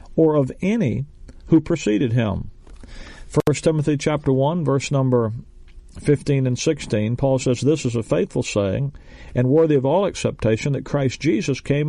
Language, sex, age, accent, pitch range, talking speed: English, male, 50-69, American, 120-160 Hz, 155 wpm